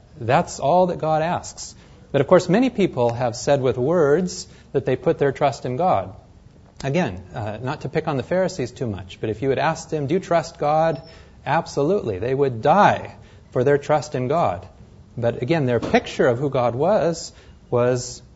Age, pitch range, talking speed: 30-49, 115-160 Hz, 195 wpm